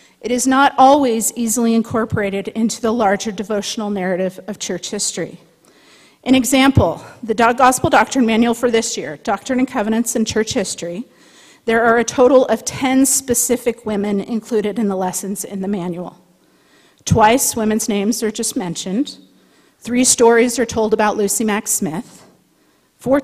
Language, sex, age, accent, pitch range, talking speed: English, female, 40-59, American, 210-245 Hz, 155 wpm